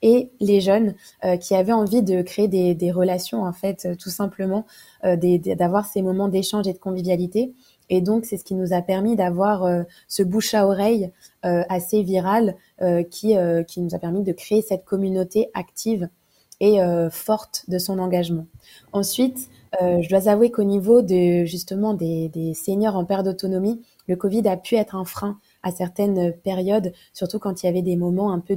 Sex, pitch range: female, 180-215 Hz